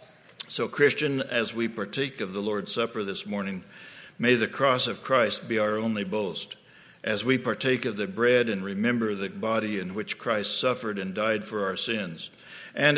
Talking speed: 185 wpm